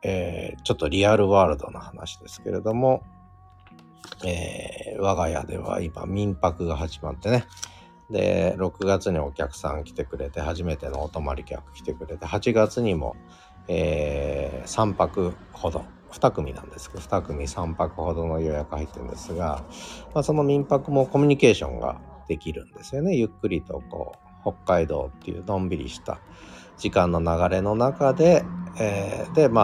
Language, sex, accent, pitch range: Japanese, male, native, 80-105 Hz